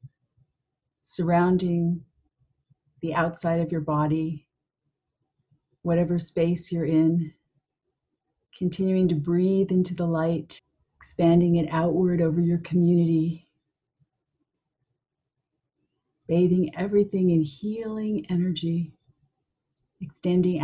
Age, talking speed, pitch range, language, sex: 50-69, 80 wpm, 150-180 Hz, English, female